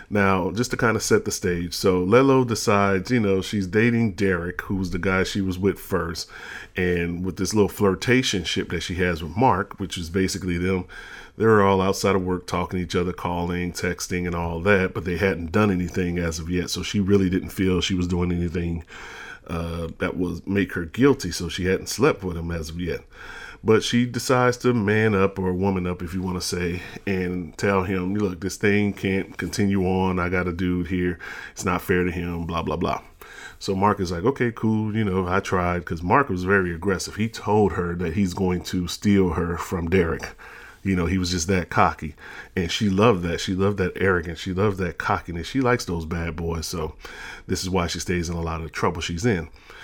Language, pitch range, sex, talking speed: English, 90-100 Hz, male, 220 wpm